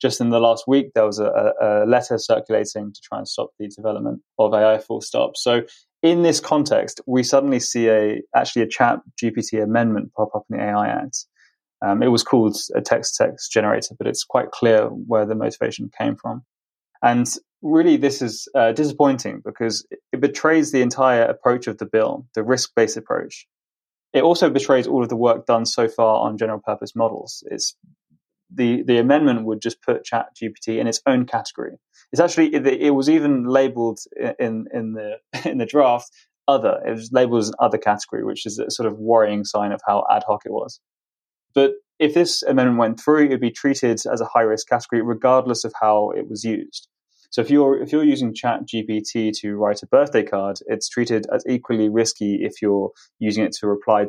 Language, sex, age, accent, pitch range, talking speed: English, male, 20-39, British, 110-135 Hz, 200 wpm